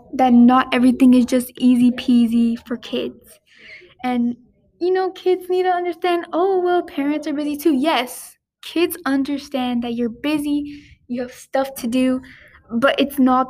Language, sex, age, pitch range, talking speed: English, female, 10-29, 255-320 Hz, 160 wpm